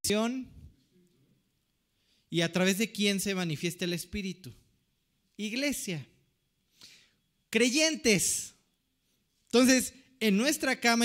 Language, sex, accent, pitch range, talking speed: Spanish, male, Mexican, 175-245 Hz, 80 wpm